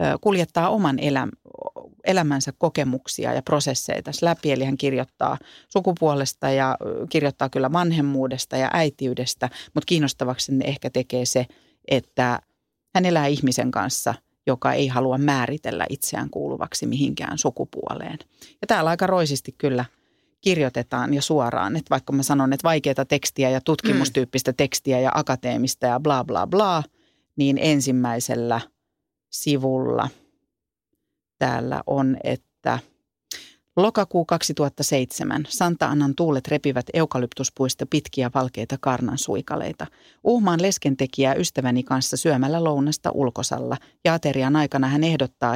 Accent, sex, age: native, female, 40-59